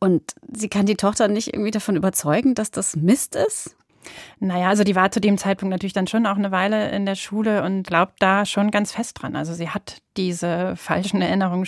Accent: German